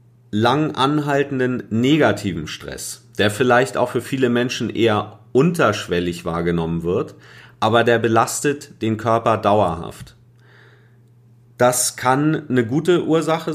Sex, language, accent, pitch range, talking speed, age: male, German, German, 105-130 Hz, 110 wpm, 30-49